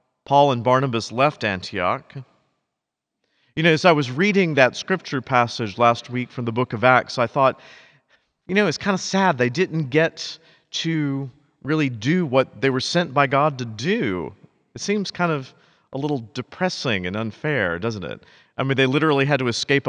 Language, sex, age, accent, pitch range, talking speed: English, male, 40-59, American, 120-170 Hz, 185 wpm